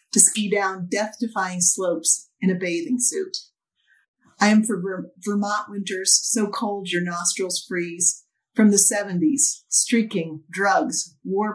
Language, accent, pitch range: English, American, 175-215 Hz